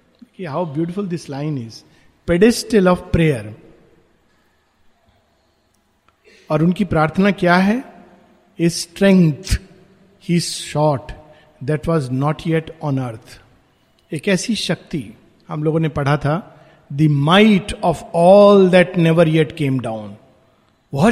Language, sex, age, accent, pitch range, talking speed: Hindi, male, 50-69, native, 155-215 Hz, 115 wpm